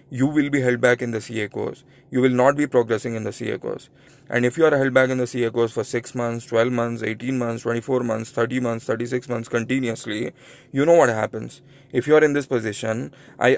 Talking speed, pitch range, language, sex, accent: 235 wpm, 115-130 Hz, English, male, Indian